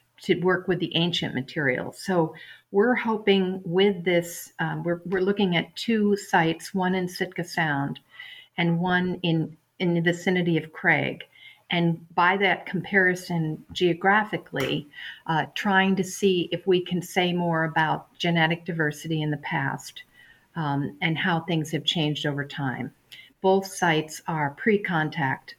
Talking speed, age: 145 wpm, 50-69